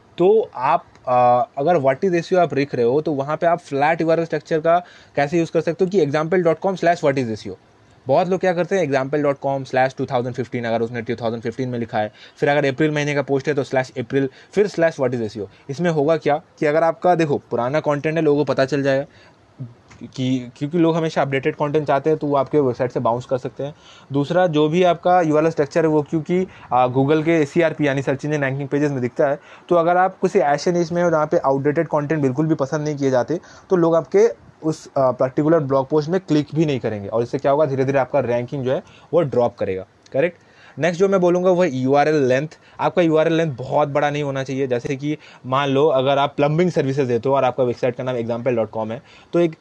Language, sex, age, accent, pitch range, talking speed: Hindi, male, 20-39, native, 130-160 Hz, 225 wpm